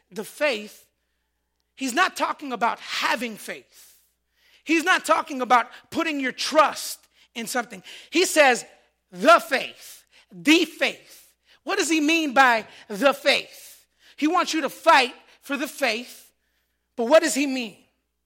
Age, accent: 30-49, American